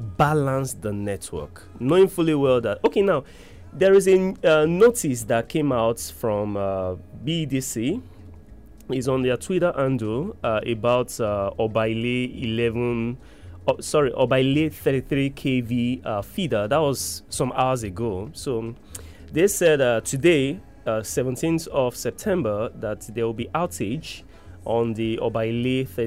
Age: 20-39